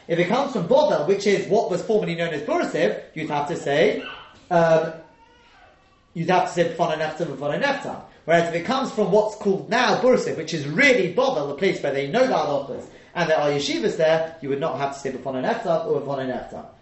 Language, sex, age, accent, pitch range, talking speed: English, male, 30-49, British, 165-220 Hz, 220 wpm